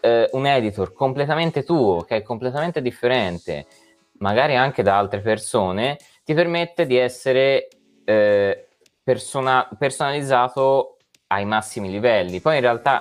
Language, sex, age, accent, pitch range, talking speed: Italian, male, 20-39, native, 90-120 Hz, 120 wpm